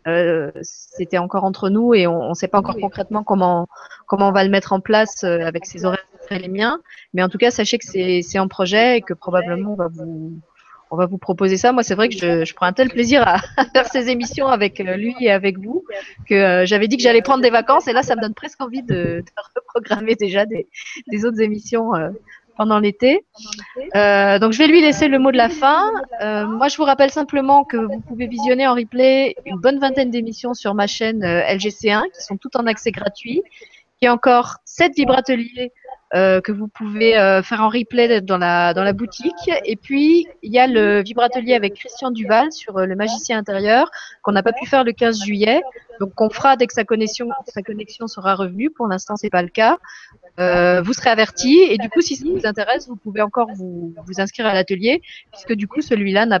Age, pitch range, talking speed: 30-49, 195-250 Hz, 230 wpm